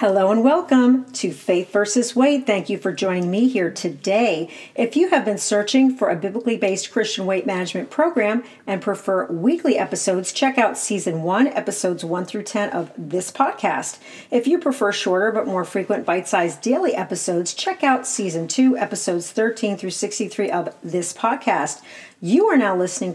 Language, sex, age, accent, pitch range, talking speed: English, female, 40-59, American, 185-240 Hz, 175 wpm